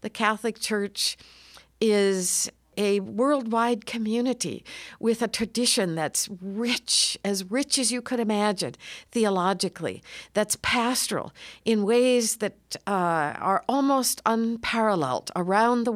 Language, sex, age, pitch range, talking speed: English, female, 50-69, 185-240 Hz, 115 wpm